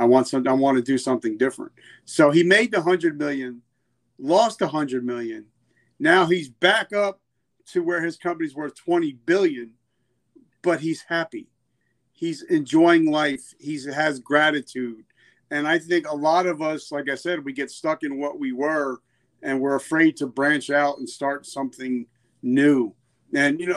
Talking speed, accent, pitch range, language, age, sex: 170 wpm, American, 140-205 Hz, English, 40-59, male